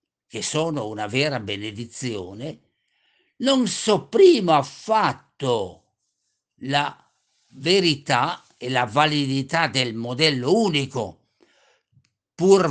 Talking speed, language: 85 wpm, Italian